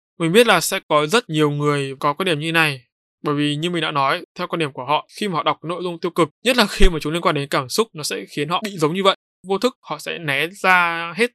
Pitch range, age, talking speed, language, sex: 150-185 Hz, 20-39, 305 wpm, Vietnamese, male